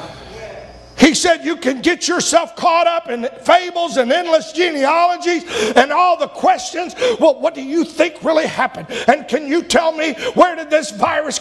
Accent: American